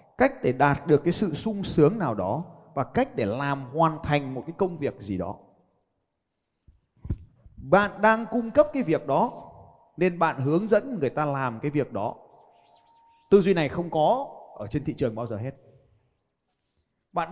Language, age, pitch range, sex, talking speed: Vietnamese, 30-49, 155-225 Hz, male, 180 wpm